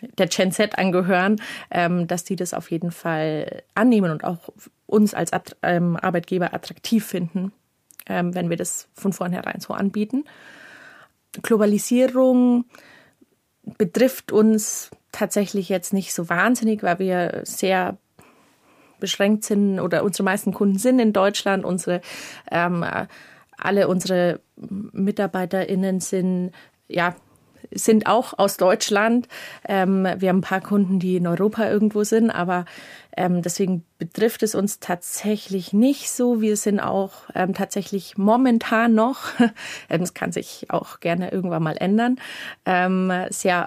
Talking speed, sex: 120 wpm, female